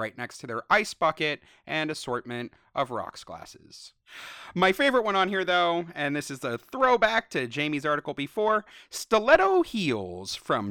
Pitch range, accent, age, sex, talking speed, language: 125-200 Hz, American, 30-49, male, 160 wpm, English